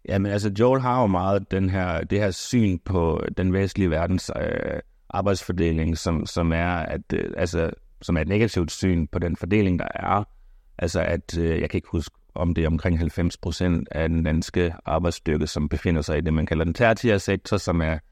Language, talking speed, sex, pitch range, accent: Danish, 210 wpm, male, 80-100 Hz, native